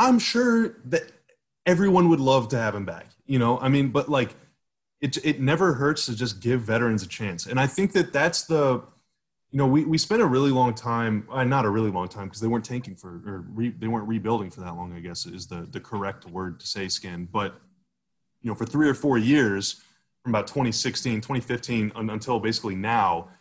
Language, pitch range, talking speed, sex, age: English, 105-140 Hz, 225 wpm, male, 20-39